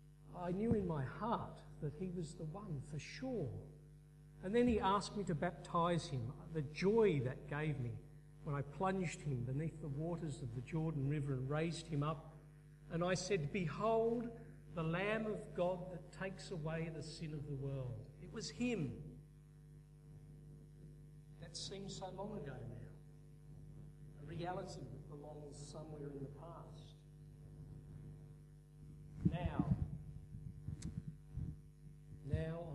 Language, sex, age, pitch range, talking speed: English, male, 50-69, 145-170 Hz, 135 wpm